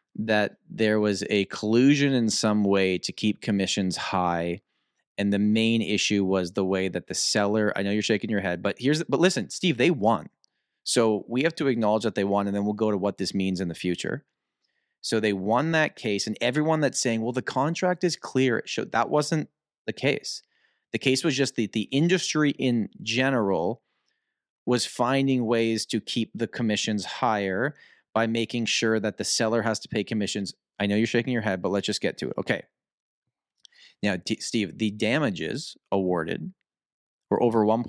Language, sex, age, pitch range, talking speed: English, male, 30-49, 100-120 Hz, 195 wpm